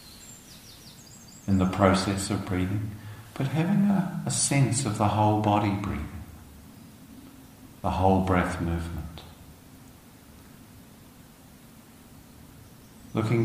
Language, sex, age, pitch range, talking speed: English, male, 50-69, 90-110 Hz, 90 wpm